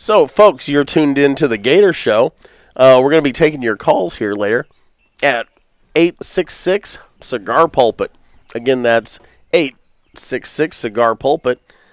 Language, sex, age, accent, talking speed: English, male, 40-59, American, 120 wpm